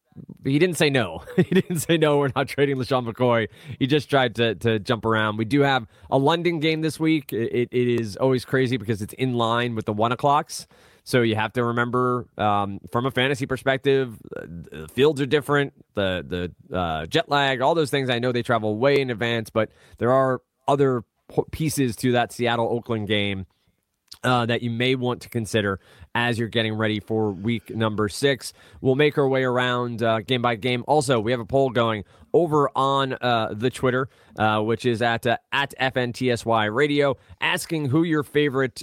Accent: American